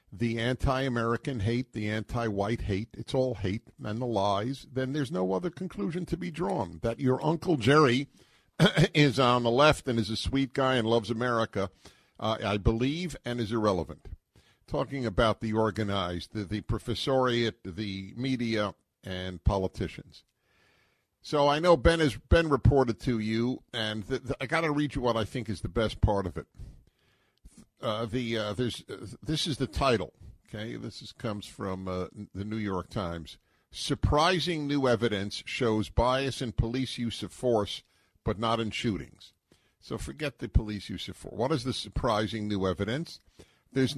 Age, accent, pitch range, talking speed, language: 50-69, American, 105-135 Hz, 170 wpm, English